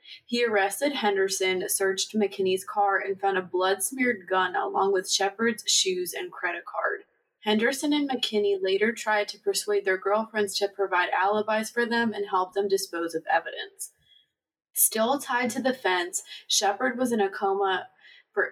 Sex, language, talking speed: female, English, 160 wpm